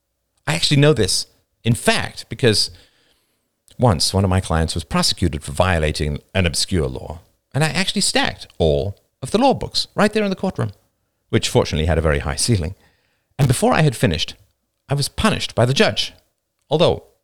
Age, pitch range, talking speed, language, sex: 50-69, 105-160 Hz, 180 wpm, English, male